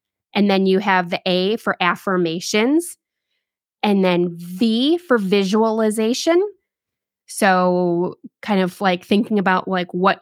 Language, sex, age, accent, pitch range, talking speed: English, female, 20-39, American, 185-240 Hz, 125 wpm